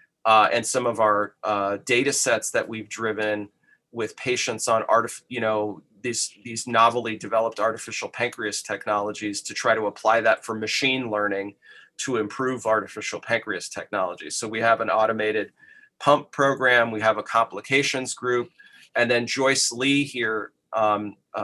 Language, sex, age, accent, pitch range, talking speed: English, male, 30-49, American, 105-125 Hz, 155 wpm